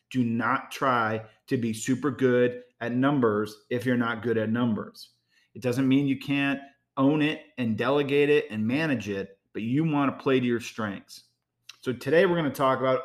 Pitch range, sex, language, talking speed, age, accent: 110-135 Hz, male, English, 200 wpm, 40-59, American